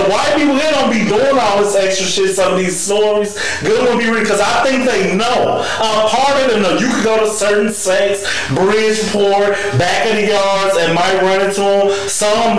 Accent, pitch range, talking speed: American, 185-225 Hz, 210 wpm